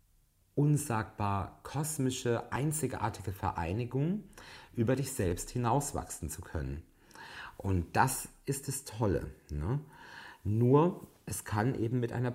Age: 40-59